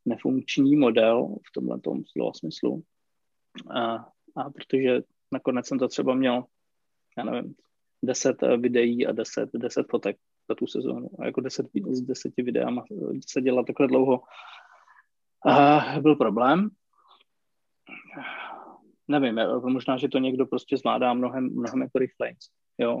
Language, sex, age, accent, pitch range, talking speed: Czech, male, 20-39, native, 130-150 Hz, 125 wpm